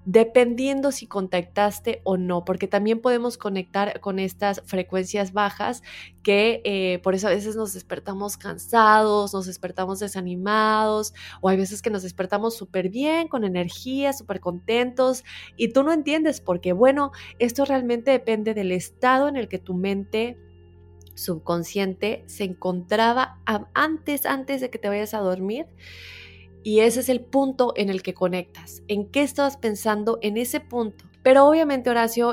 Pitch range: 180-225 Hz